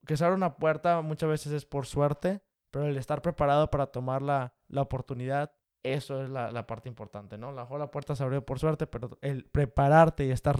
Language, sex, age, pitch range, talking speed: Spanish, male, 20-39, 135-160 Hz, 215 wpm